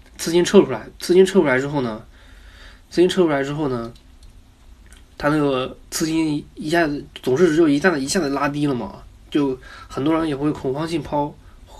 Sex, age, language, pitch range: male, 20-39, Chinese, 100-150 Hz